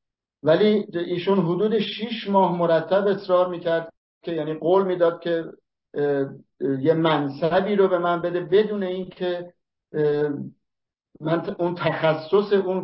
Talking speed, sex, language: 125 wpm, male, English